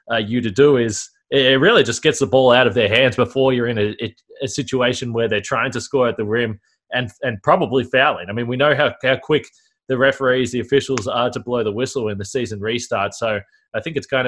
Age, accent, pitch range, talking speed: 20-39, Australian, 115-135 Hz, 240 wpm